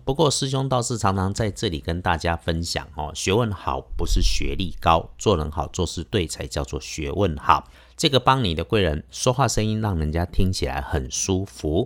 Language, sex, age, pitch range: Chinese, male, 50-69, 80-110 Hz